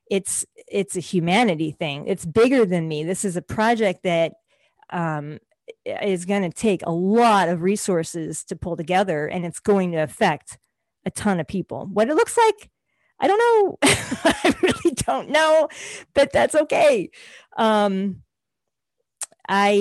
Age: 40-59